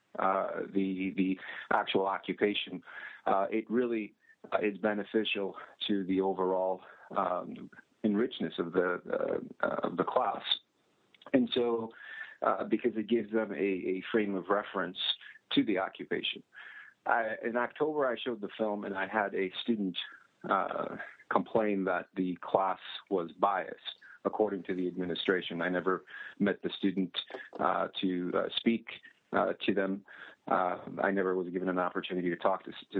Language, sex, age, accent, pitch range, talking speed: English, male, 40-59, American, 95-110 Hz, 150 wpm